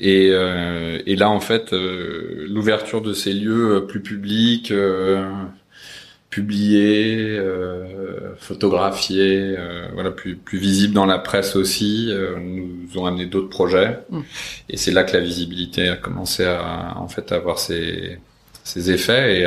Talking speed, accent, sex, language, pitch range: 150 wpm, French, male, French, 90-100 Hz